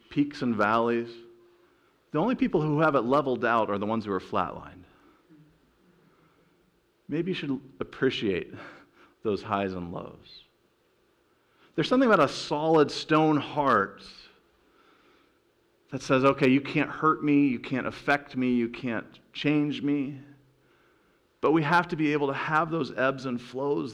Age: 40-59